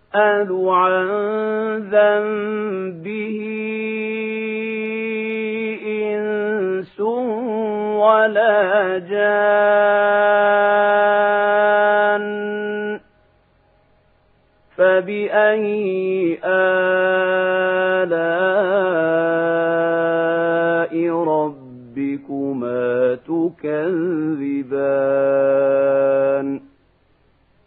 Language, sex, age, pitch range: Arabic, male, 40-59, 165-210 Hz